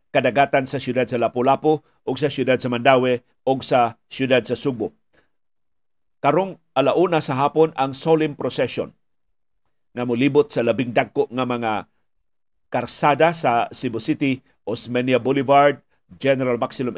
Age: 50-69